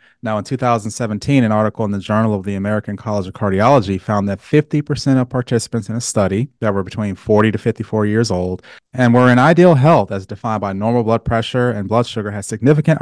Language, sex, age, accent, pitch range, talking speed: English, male, 30-49, American, 105-130 Hz, 210 wpm